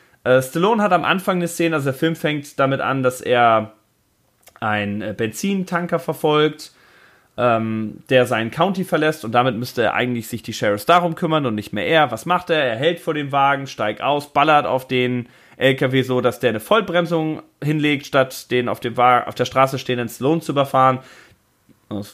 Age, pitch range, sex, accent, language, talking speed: 30-49, 125-175 Hz, male, German, German, 185 wpm